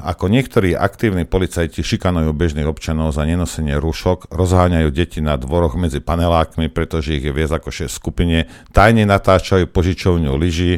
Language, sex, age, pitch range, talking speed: Slovak, male, 50-69, 75-95 Hz, 150 wpm